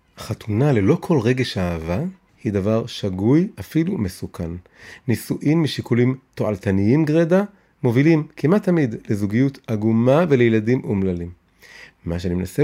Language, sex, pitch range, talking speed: Hebrew, male, 95-140 Hz, 115 wpm